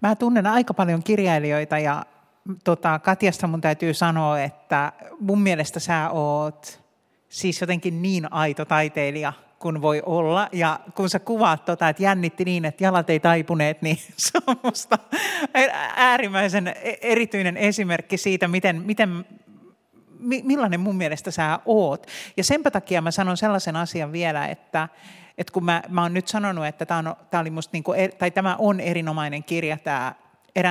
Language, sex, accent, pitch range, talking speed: Finnish, male, native, 155-195 Hz, 155 wpm